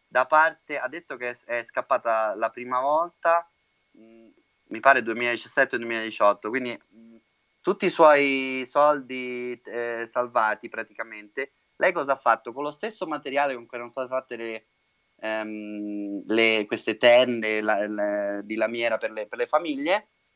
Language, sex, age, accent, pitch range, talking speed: Italian, male, 30-49, native, 110-140 Hz, 145 wpm